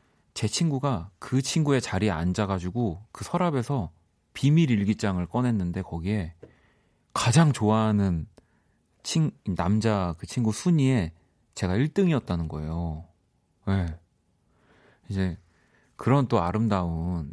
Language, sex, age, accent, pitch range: Korean, male, 30-49, native, 90-125 Hz